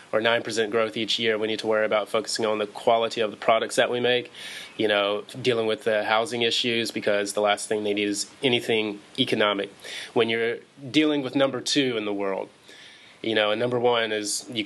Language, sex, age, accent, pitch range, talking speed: English, male, 20-39, American, 105-115 Hz, 215 wpm